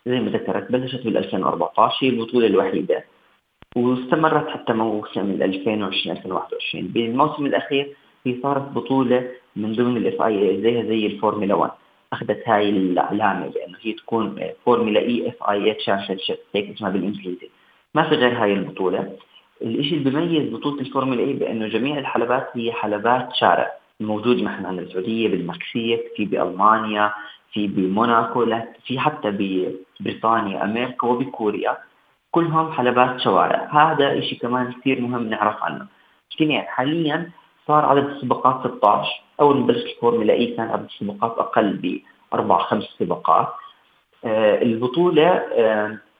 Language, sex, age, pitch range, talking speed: Arabic, female, 30-49, 105-135 Hz, 130 wpm